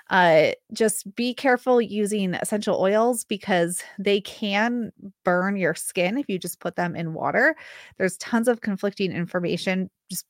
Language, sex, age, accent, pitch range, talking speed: English, female, 20-39, American, 180-225 Hz, 150 wpm